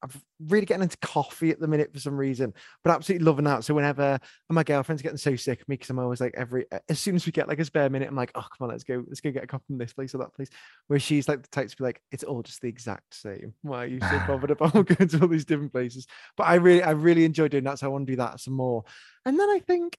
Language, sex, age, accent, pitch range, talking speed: English, male, 20-39, British, 130-170 Hz, 305 wpm